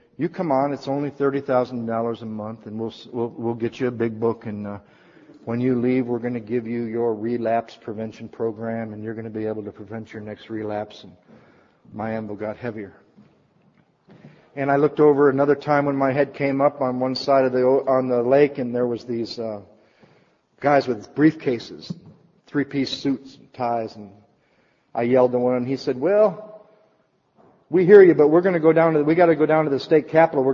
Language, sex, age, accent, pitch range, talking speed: English, male, 50-69, American, 115-140 Hz, 210 wpm